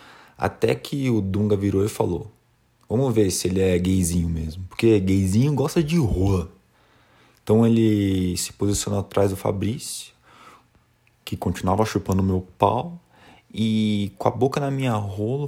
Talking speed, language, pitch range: 145 wpm, Portuguese, 90-120 Hz